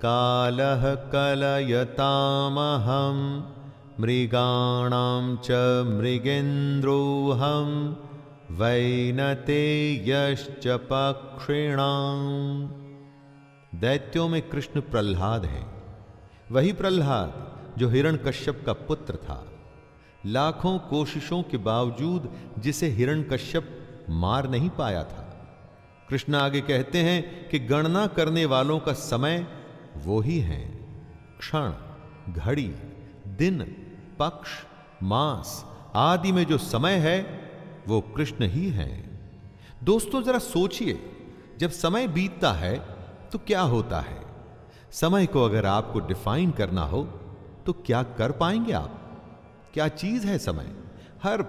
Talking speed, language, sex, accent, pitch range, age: 100 wpm, Hindi, male, native, 115-155 Hz, 40-59